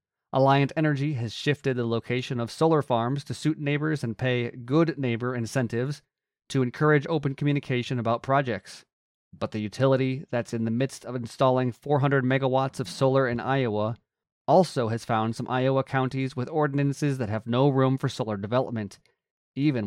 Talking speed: 165 wpm